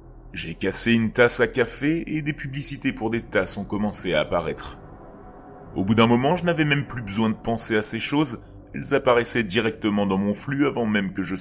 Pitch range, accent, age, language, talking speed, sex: 100-135 Hz, French, 30-49, French, 210 wpm, male